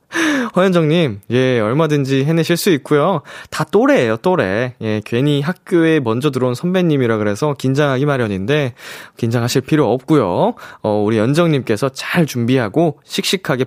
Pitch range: 115-170 Hz